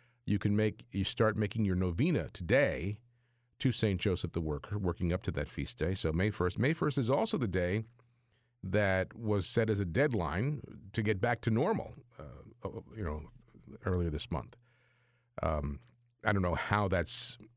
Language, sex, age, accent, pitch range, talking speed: English, male, 50-69, American, 90-120 Hz, 180 wpm